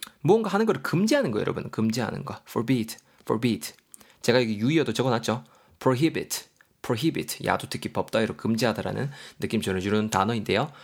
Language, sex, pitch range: Korean, male, 110-160 Hz